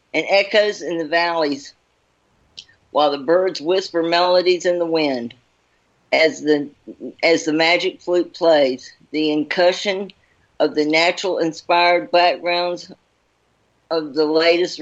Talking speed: 115 wpm